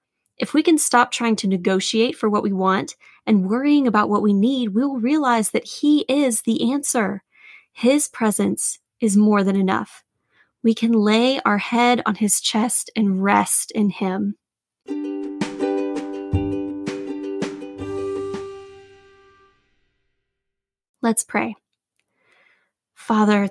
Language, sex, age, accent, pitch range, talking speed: English, female, 20-39, American, 195-260 Hz, 115 wpm